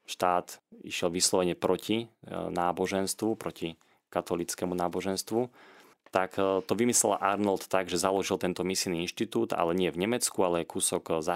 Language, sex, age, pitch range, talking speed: Slovak, male, 20-39, 85-95 Hz, 130 wpm